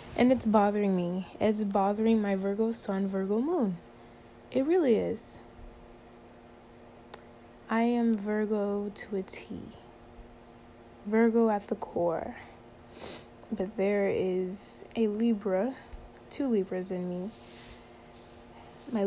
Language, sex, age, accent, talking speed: English, female, 10-29, American, 105 wpm